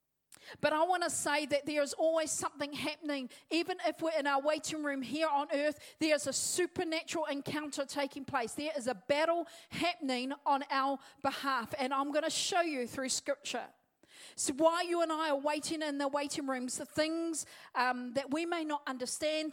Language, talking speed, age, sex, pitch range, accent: English, 195 wpm, 40-59, female, 285-335 Hz, Australian